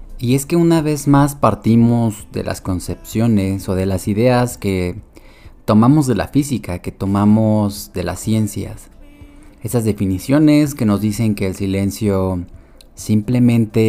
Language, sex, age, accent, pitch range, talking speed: Spanish, male, 30-49, Mexican, 95-115 Hz, 145 wpm